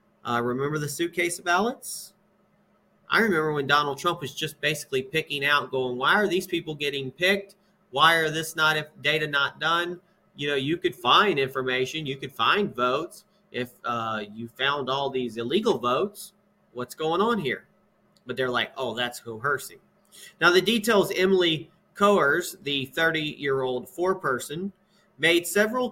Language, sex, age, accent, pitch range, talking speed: English, male, 30-49, American, 140-195 Hz, 160 wpm